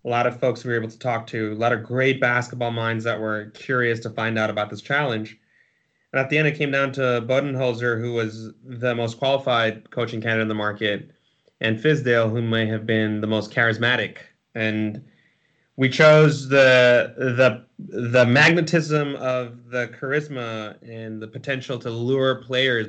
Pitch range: 110-135 Hz